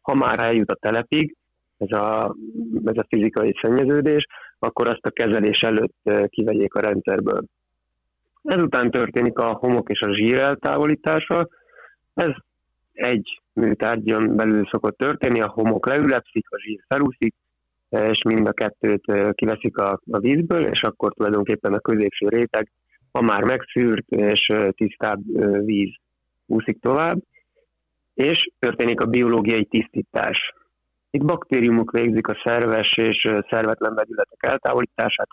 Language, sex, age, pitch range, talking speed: Hungarian, male, 30-49, 105-125 Hz, 125 wpm